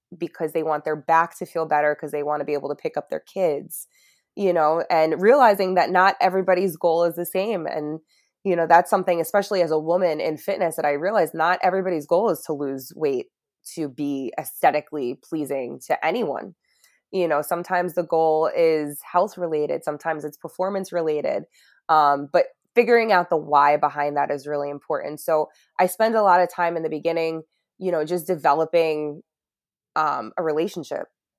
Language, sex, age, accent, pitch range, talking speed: English, female, 20-39, American, 150-175 Hz, 185 wpm